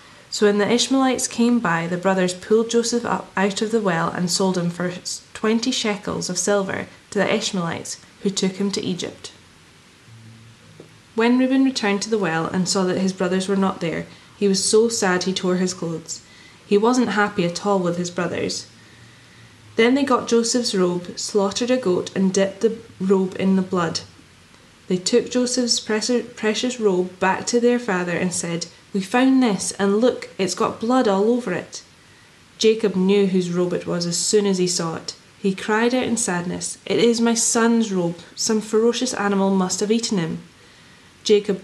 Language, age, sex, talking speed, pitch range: English, 10-29, female, 185 wpm, 180-230 Hz